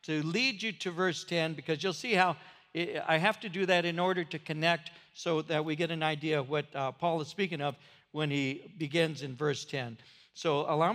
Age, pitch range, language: 60-79, 145-185 Hz, English